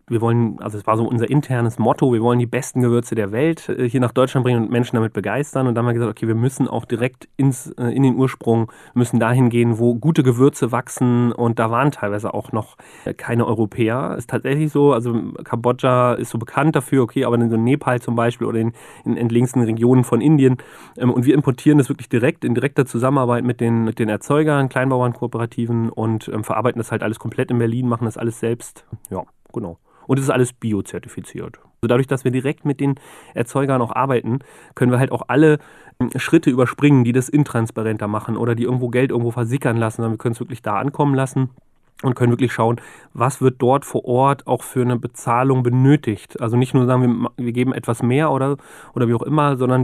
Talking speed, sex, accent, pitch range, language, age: 210 wpm, male, German, 115-130 Hz, German, 30-49